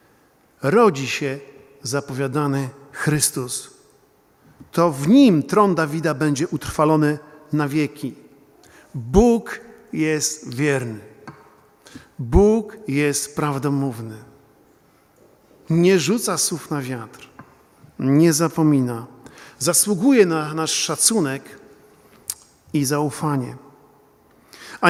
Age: 50-69